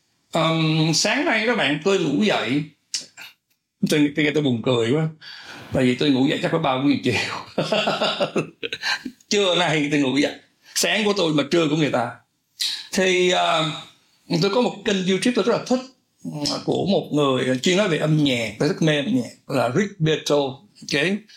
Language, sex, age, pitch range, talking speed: Vietnamese, male, 60-79, 145-205 Hz, 175 wpm